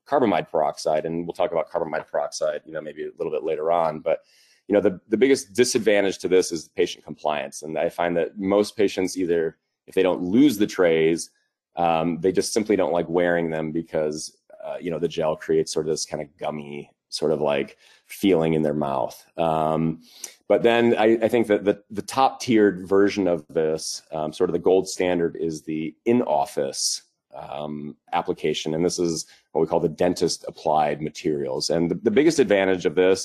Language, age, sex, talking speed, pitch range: English, 30-49, male, 200 wpm, 85-110 Hz